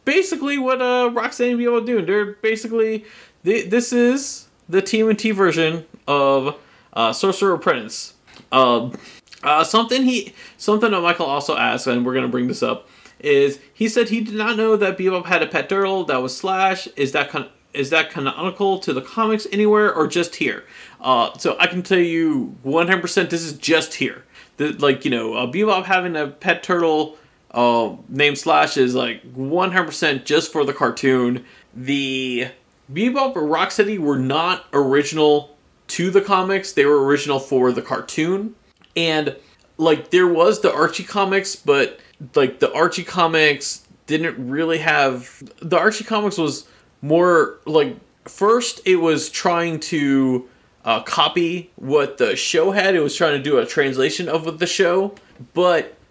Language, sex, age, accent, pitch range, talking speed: English, male, 30-49, American, 140-200 Hz, 165 wpm